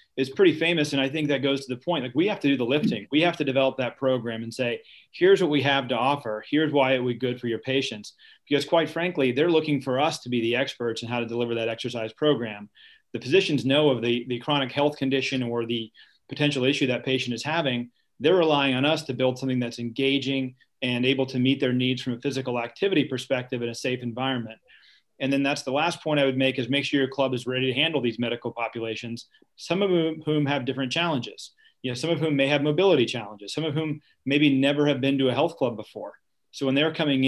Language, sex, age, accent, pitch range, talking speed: English, male, 40-59, American, 125-145 Hz, 245 wpm